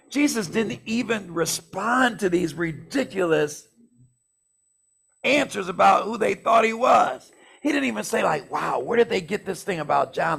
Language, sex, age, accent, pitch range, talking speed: English, male, 60-79, American, 135-195 Hz, 160 wpm